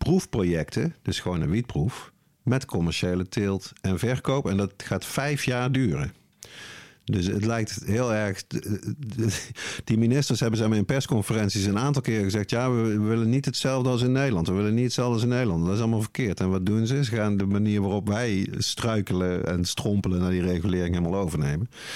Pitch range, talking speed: 95-120 Hz, 185 wpm